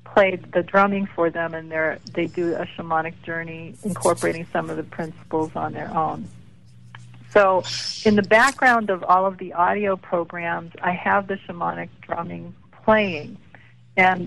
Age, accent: 50-69, American